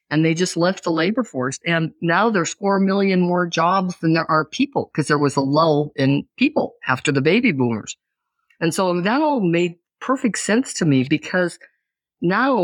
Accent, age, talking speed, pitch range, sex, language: American, 50-69, 190 wpm, 145-195 Hz, female, English